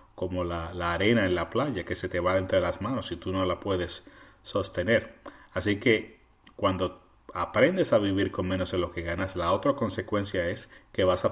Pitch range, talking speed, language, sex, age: 90-105 Hz, 205 wpm, Spanish, male, 30-49